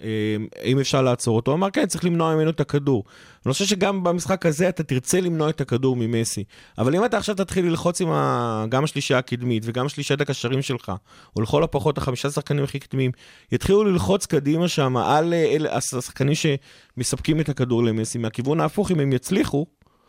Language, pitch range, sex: Hebrew, 120-150 Hz, male